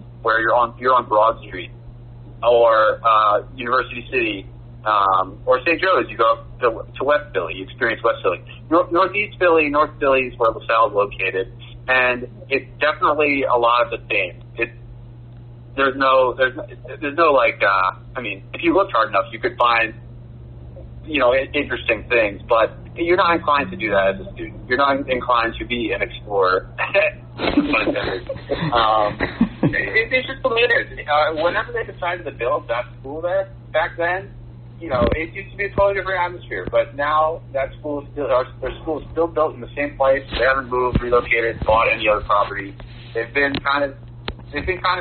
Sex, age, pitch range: male, 40-59, 120-150 Hz